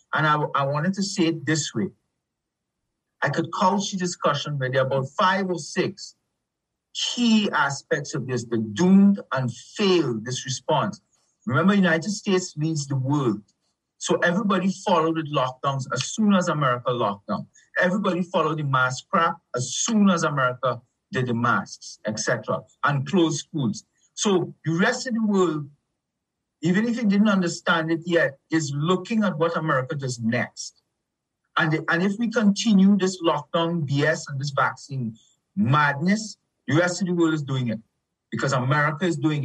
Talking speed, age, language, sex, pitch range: 165 wpm, 50-69, English, male, 140-185 Hz